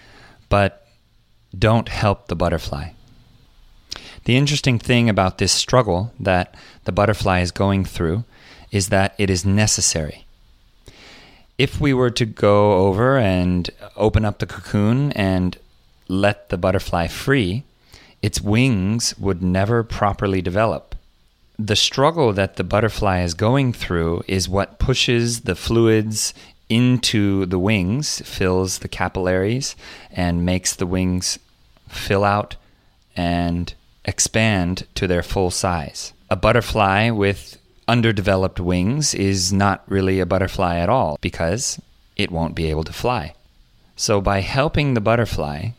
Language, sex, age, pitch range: Korean, male, 30-49, 90-115 Hz